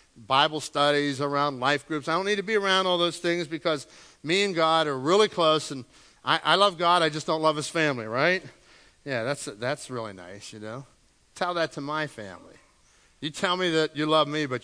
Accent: American